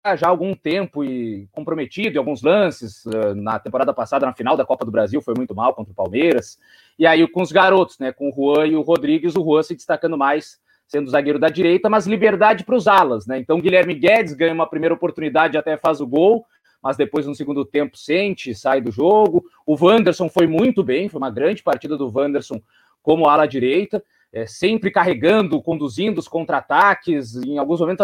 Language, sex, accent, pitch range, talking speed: Portuguese, male, Brazilian, 155-200 Hz, 210 wpm